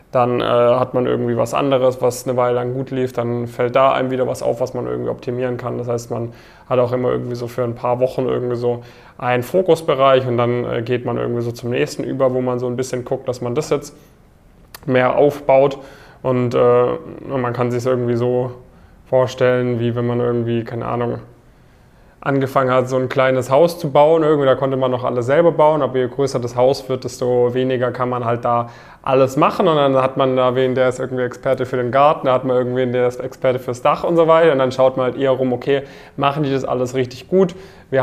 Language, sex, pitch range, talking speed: German, male, 120-135 Hz, 235 wpm